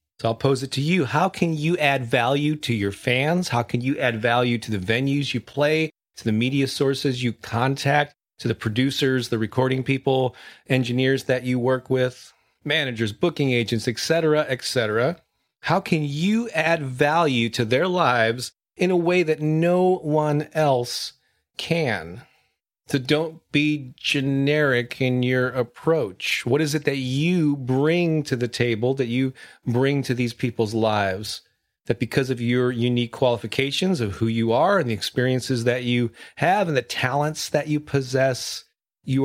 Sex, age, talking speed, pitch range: male, 30-49, 165 wpm, 120-150 Hz